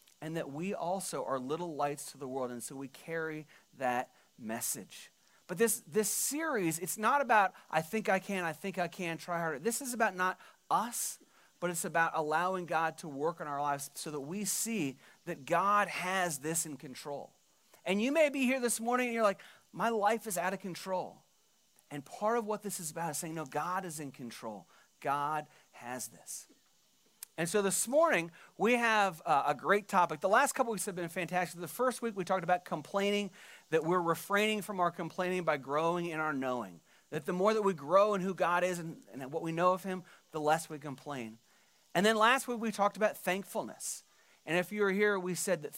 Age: 30-49